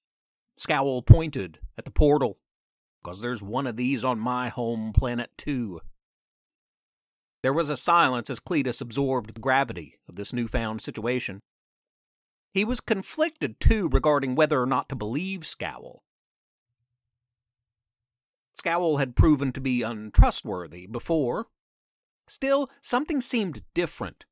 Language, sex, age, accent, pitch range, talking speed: English, male, 40-59, American, 120-165 Hz, 125 wpm